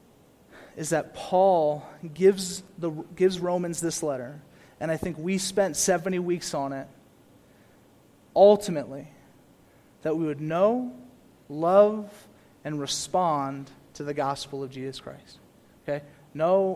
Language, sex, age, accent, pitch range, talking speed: English, male, 30-49, American, 150-185 Hz, 120 wpm